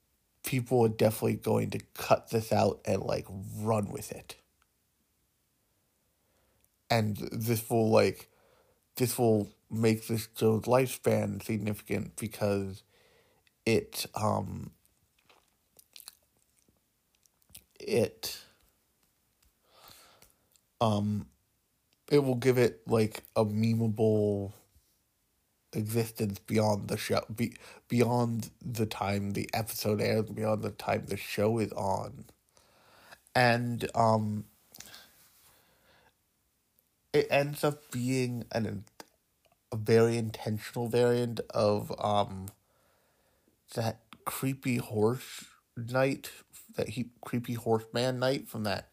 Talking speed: 95 wpm